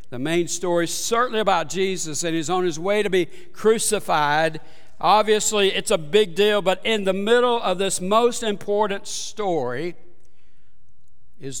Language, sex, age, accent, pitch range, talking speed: English, male, 60-79, American, 135-170 Hz, 155 wpm